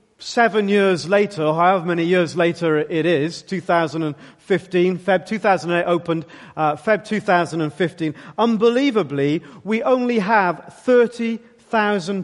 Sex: male